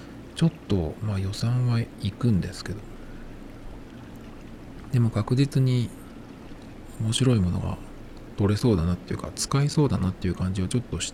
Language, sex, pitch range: Japanese, male, 95-115 Hz